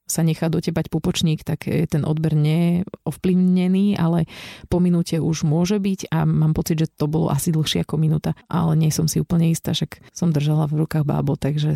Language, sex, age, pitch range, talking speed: Slovak, female, 30-49, 165-190 Hz, 190 wpm